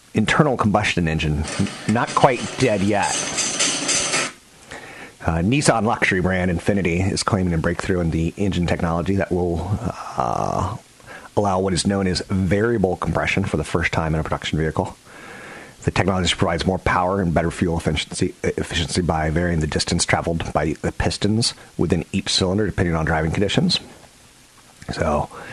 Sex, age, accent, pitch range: male, 40-59, American, 80-95 Hz